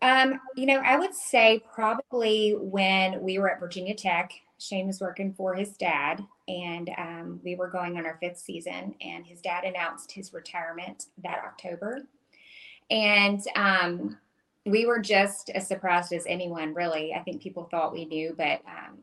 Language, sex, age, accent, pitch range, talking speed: English, female, 20-39, American, 170-215 Hz, 170 wpm